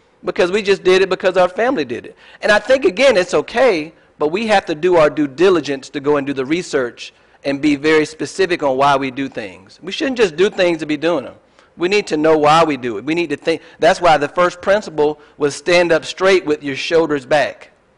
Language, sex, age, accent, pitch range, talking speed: English, male, 40-59, American, 145-185 Hz, 245 wpm